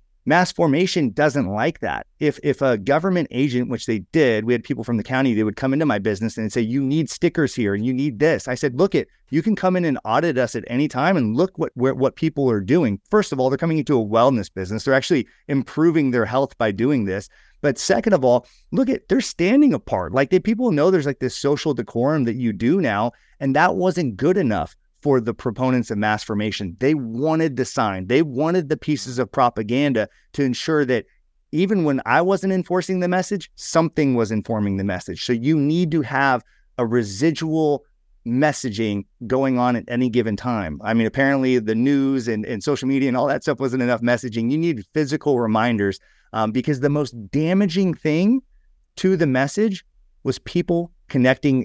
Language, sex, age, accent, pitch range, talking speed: English, male, 30-49, American, 120-160 Hz, 205 wpm